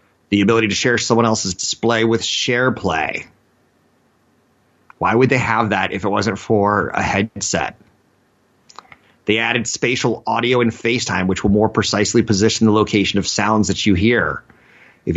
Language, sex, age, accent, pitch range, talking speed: English, male, 30-49, American, 100-120 Hz, 160 wpm